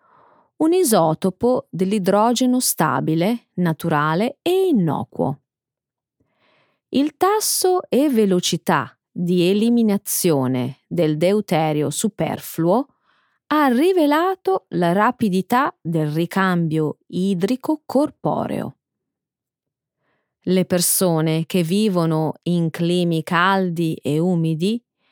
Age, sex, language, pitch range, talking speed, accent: 30-49, female, Italian, 165-270 Hz, 80 wpm, native